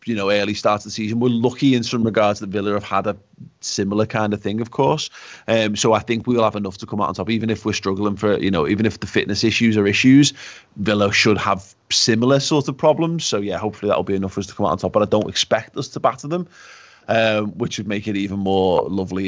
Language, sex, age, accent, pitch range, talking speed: English, male, 30-49, British, 100-130 Hz, 270 wpm